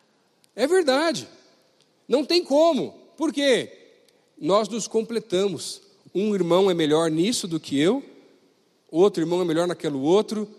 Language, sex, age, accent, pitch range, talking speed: Portuguese, male, 40-59, Brazilian, 170-240 Hz, 135 wpm